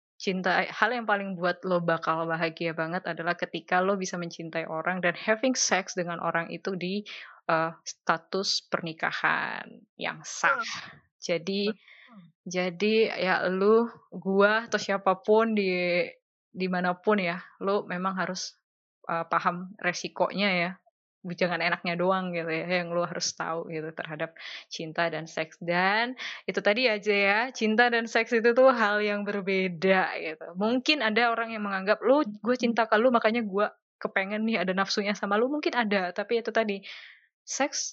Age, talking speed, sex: 20-39, 150 wpm, female